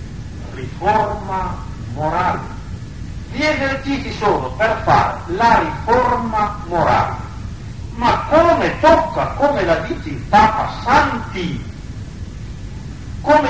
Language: Italian